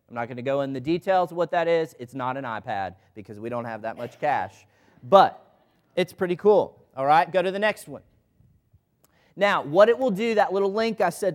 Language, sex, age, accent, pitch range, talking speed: English, male, 30-49, American, 150-190 Hz, 235 wpm